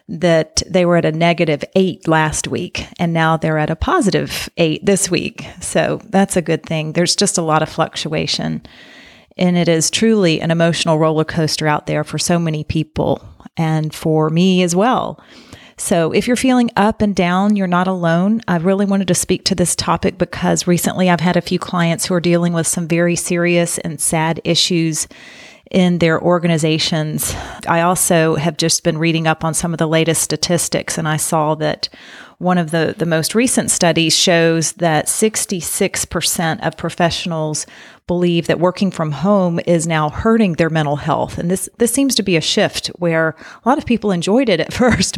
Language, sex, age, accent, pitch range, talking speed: English, female, 30-49, American, 160-190 Hz, 190 wpm